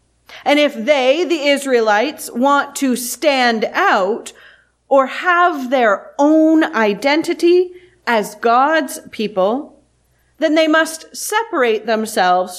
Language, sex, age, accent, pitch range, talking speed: English, female, 30-49, American, 205-295 Hz, 105 wpm